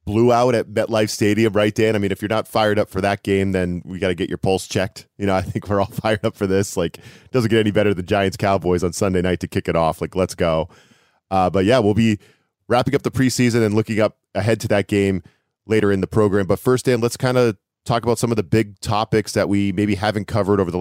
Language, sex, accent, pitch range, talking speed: English, male, American, 95-115 Hz, 270 wpm